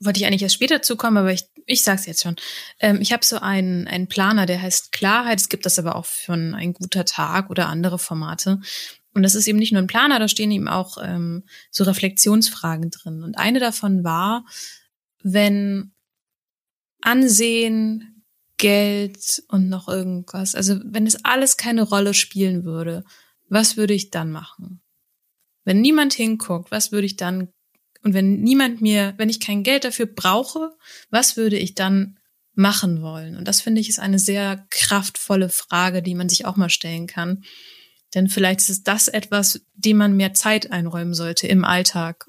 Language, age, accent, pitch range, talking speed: German, 20-39, German, 180-215 Hz, 180 wpm